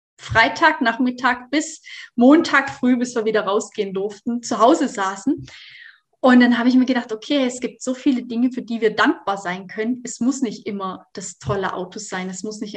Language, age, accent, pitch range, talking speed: German, 20-39, German, 205-250 Hz, 195 wpm